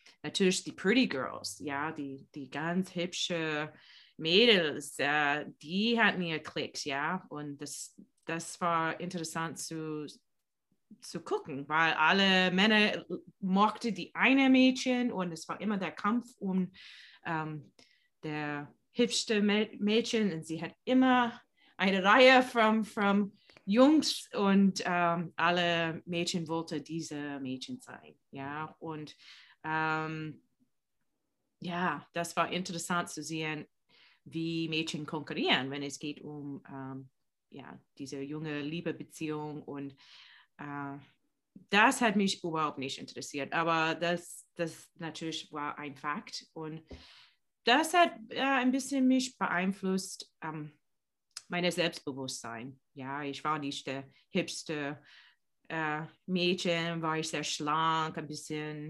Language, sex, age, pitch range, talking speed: English, female, 20-39, 150-195 Hz, 115 wpm